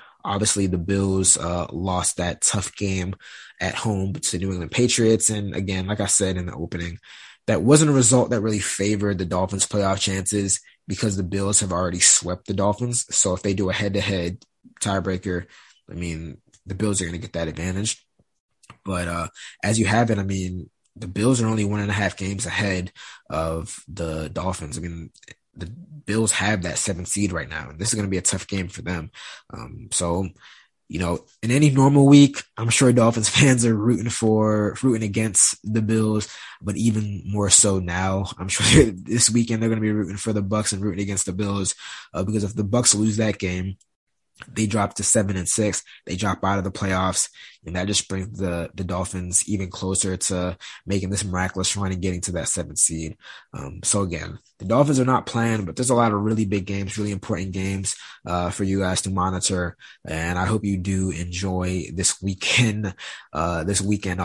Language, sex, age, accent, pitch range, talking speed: English, male, 20-39, American, 90-110 Hz, 200 wpm